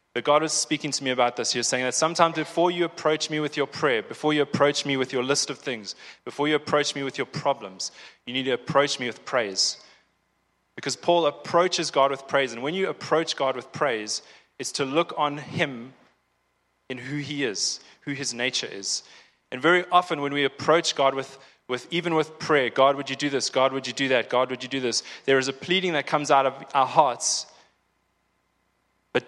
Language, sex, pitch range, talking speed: English, male, 125-150 Hz, 220 wpm